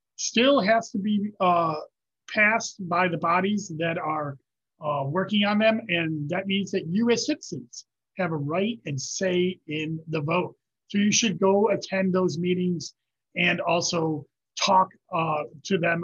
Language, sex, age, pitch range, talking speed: English, male, 30-49, 150-195 Hz, 155 wpm